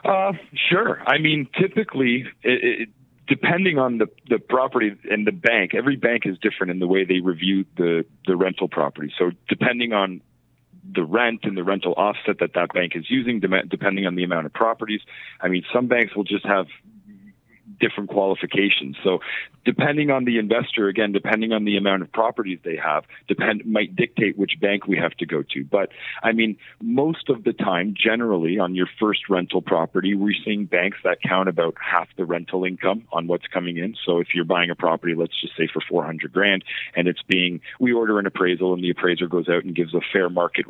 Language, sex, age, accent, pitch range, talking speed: English, male, 40-59, American, 85-115 Hz, 205 wpm